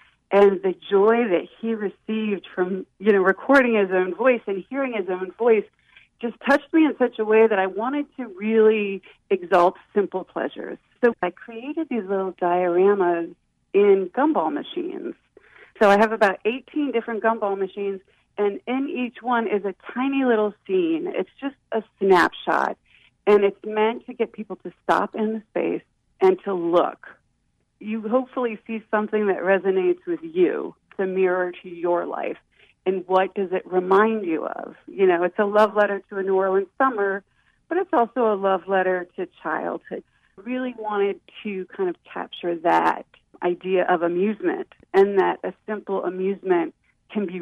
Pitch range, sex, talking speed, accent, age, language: 185-235 Hz, female, 170 wpm, American, 40-59, English